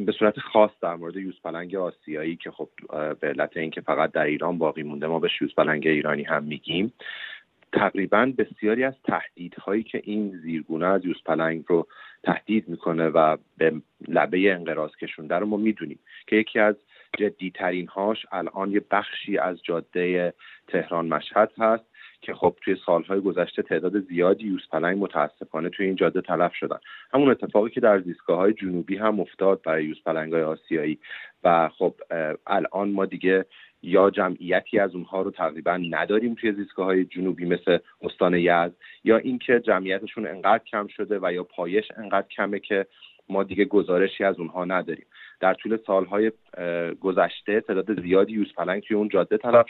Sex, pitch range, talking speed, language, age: male, 85-105 Hz, 160 wpm, Persian, 40-59